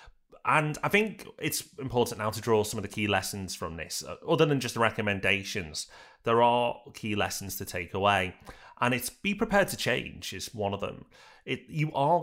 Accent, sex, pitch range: British, male, 100-135 Hz